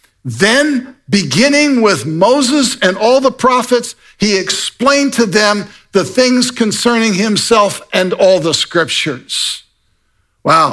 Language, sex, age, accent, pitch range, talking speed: English, male, 60-79, American, 130-200 Hz, 115 wpm